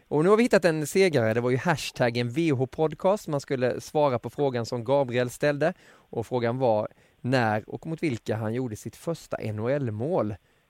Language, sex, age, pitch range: English, male, 20-39, 115-150 Hz